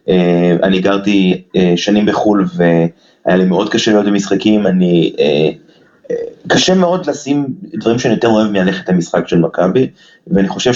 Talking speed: 155 wpm